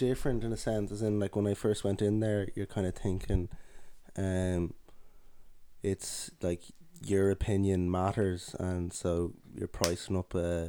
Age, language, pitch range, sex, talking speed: 20-39, English, 85-95 Hz, male, 165 wpm